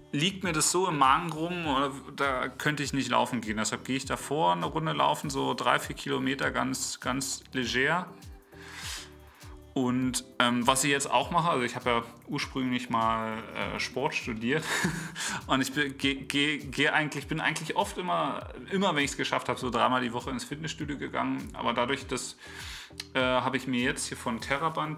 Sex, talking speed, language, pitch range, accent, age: male, 180 wpm, English, 115-140 Hz, German, 40-59